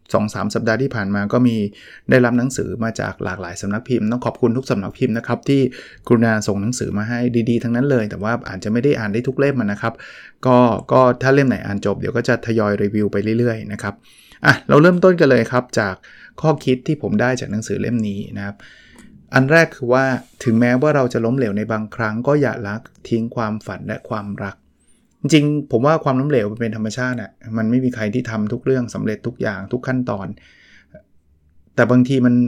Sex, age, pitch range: male, 20-39, 105-130 Hz